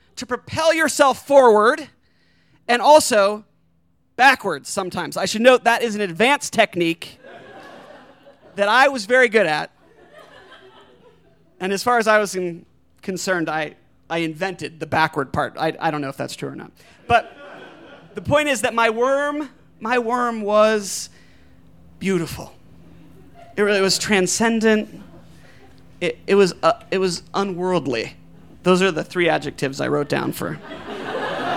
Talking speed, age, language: 145 wpm, 30-49, English